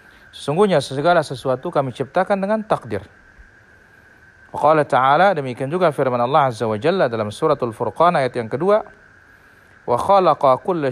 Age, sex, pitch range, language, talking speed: 40-59, male, 130-185 Hz, Indonesian, 135 wpm